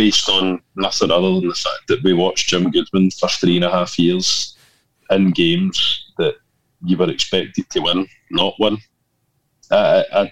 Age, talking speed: 20-39, 180 wpm